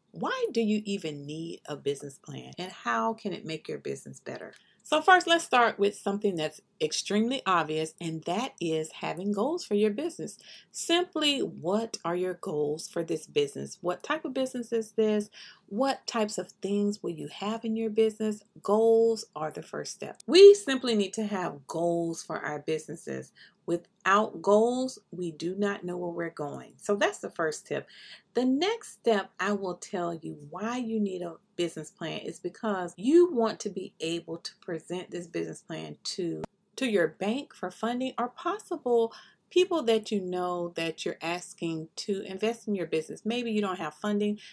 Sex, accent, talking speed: female, American, 180 wpm